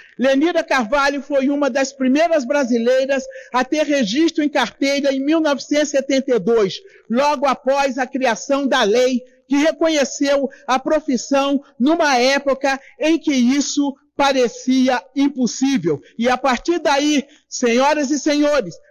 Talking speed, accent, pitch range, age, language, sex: 120 wpm, Brazilian, 260-300 Hz, 50-69, Portuguese, male